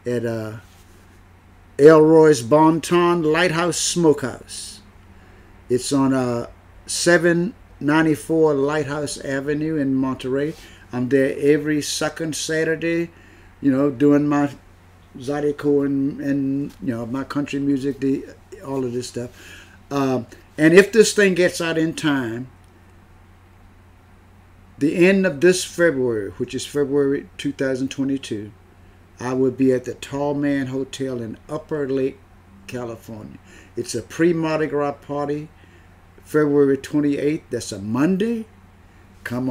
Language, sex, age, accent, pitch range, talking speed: English, male, 50-69, American, 100-150 Hz, 125 wpm